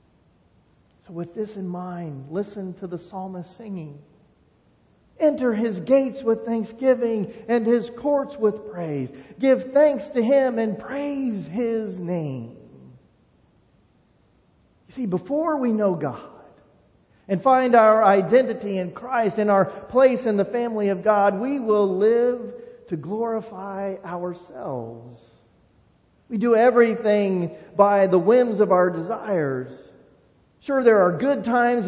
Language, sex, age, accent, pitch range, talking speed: English, male, 40-59, American, 180-235 Hz, 130 wpm